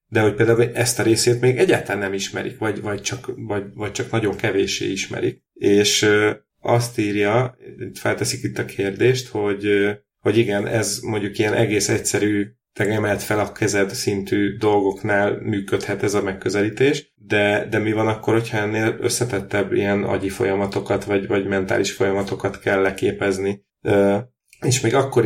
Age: 30-49